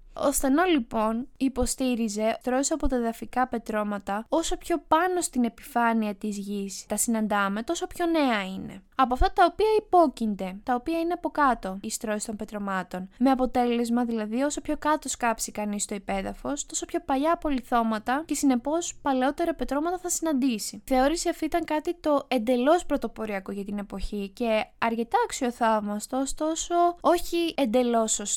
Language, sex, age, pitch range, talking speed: Greek, female, 10-29, 220-295 Hz, 150 wpm